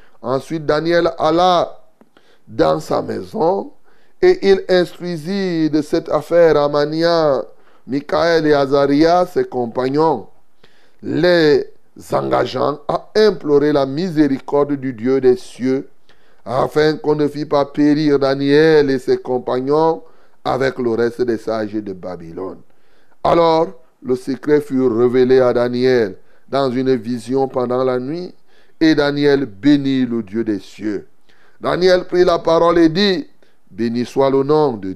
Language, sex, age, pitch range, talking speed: French, male, 30-49, 135-165 Hz, 130 wpm